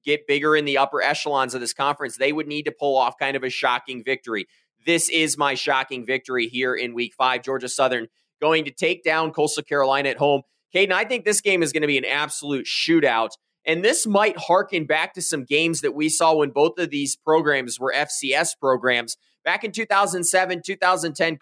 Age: 20-39